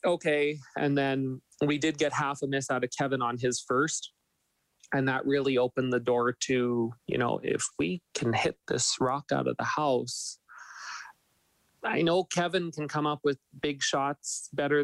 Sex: male